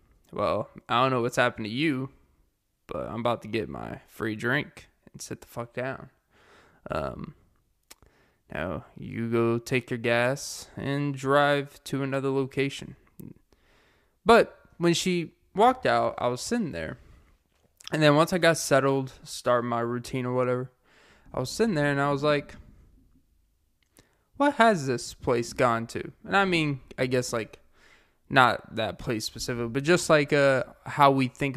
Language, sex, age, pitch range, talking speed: English, male, 20-39, 120-145 Hz, 160 wpm